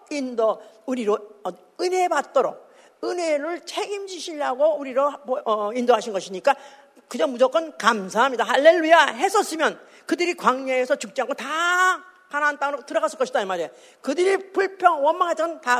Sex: female